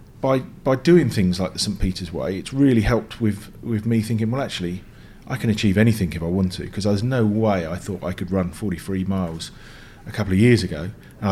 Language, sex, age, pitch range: English, male, 40-59, 100-125 Hz